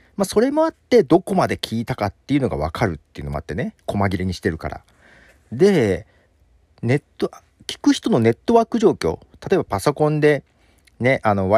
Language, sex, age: Japanese, male, 40-59